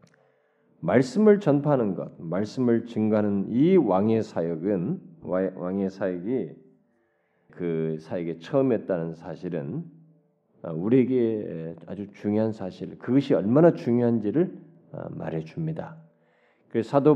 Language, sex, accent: Korean, male, native